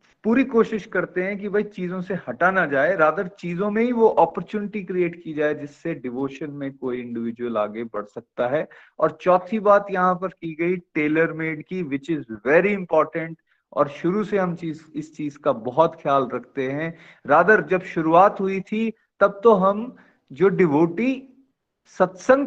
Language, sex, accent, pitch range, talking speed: Hindi, male, native, 155-210 Hz, 175 wpm